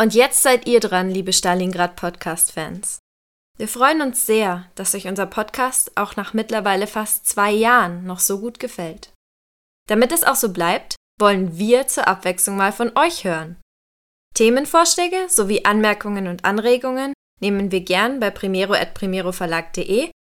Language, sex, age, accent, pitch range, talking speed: German, female, 20-39, German, 180-240 Hz, 150 wpm